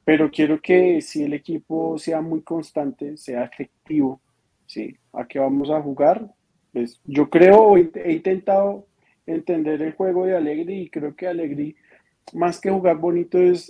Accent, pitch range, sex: Colombian, 135-170 Hz, male